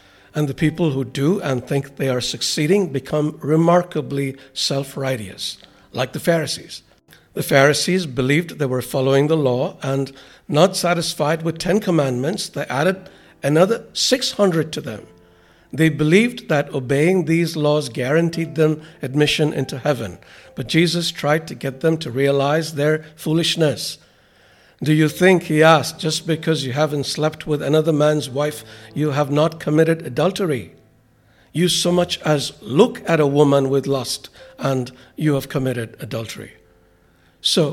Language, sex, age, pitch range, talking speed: English, male, 60-79, 135-165 Hz, 145 wpm